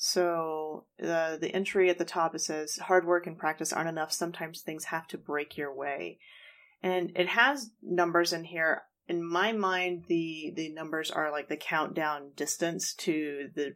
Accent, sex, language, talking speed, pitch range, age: American, female, English, 180 wpm, 155-185 Hz, 30-49